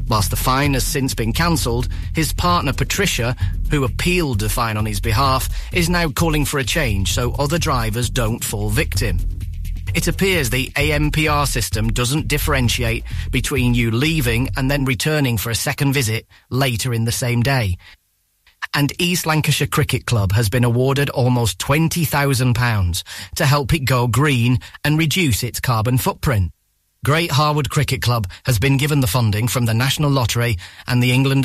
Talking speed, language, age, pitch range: 165 wpm, English, 40-59, 110-145 Hz